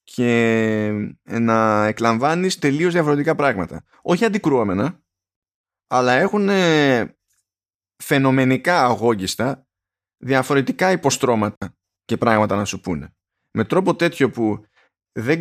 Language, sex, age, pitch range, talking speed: Greek, male, 20-39, 100-145 Hz, 95 wpm